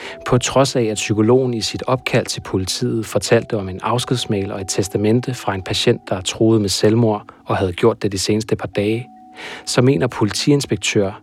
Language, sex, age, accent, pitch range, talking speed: Danish, male, 30-49, native, 105-125 Hz, 185 wpm